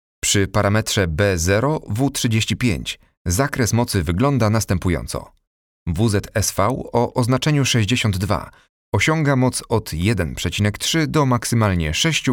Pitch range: 90-125 Hz